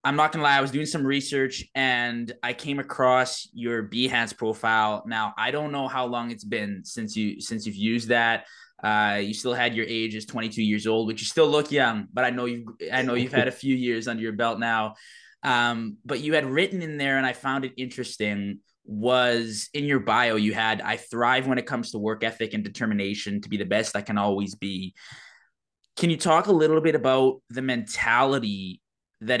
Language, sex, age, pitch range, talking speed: English, male, 20-39, 110-130 Hz, 220 wpm